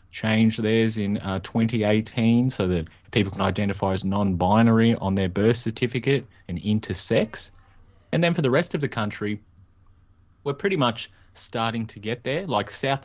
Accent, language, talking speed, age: Australian, English, 160 wpm, 20-39